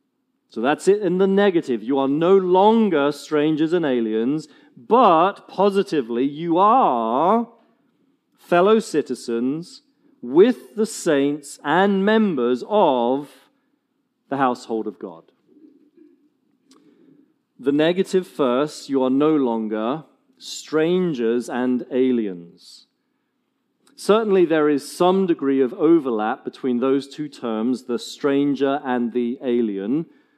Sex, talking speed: male, 110 wpm